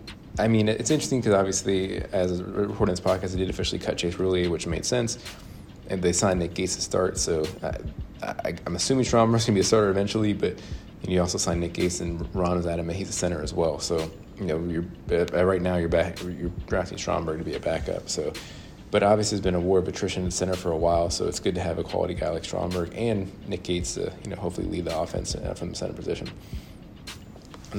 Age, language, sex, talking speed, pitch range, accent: 30-49, English, male, 235 wpm, 85-100 Hz, American